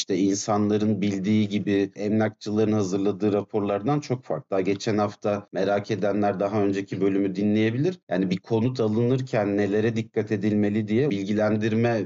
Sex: male